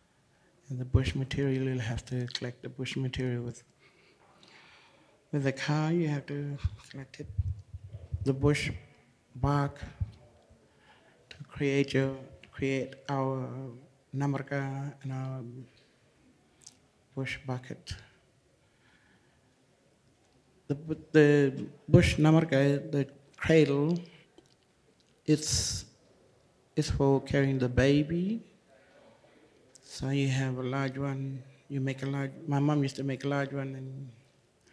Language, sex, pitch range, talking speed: English, male, 125-140 Hz, 110 wpm